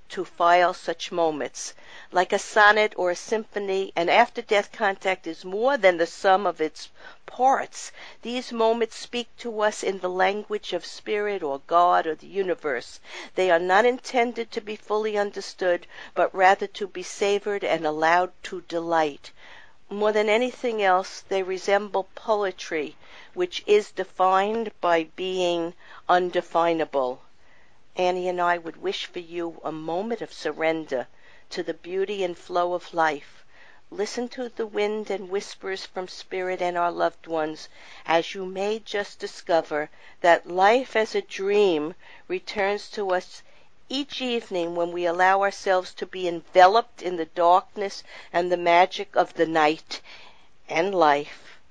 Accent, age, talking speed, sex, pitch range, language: American, 50-69, 150 wpm, female, 170-215 Hz, English